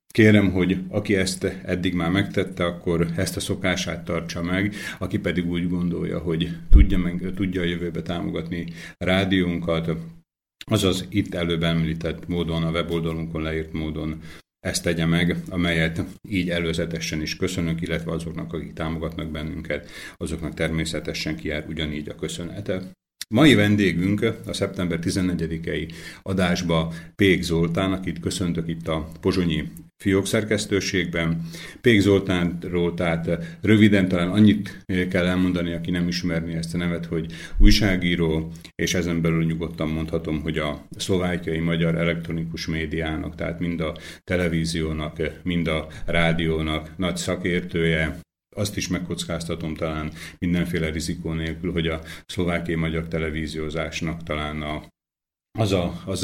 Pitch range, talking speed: 80-90 Hz, 130 wpm